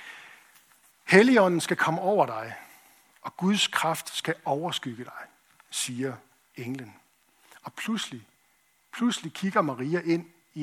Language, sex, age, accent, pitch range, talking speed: Danish, male, 60-79, native, 150-195 Hz, 115 wpm